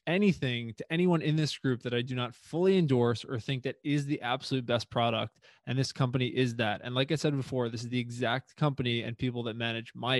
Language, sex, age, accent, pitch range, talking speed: English, male, 20-39, American, 120-145 Hz, 235 wpm